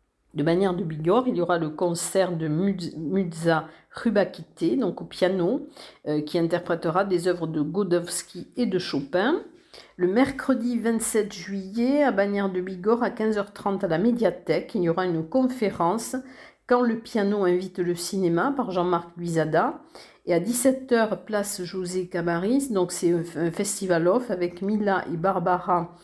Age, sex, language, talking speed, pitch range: 50-69, female, French, 155 wpm, 170-215 Hz